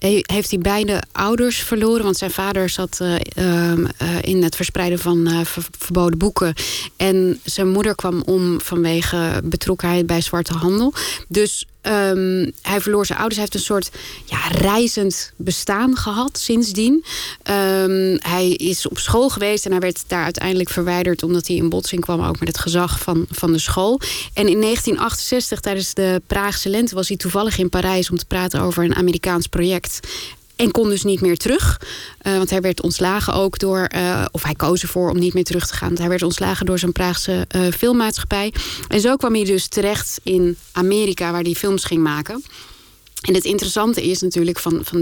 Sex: female